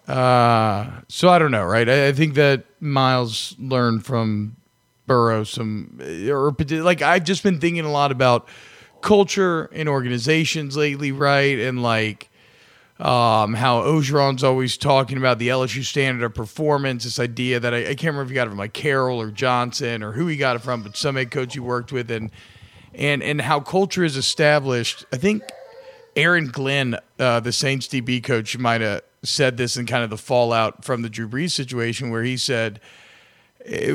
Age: 40-59